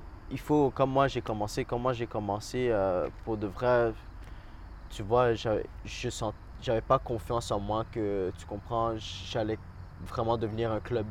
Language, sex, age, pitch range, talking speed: English, male, 20-39, 100-115 Hz, 165 wpm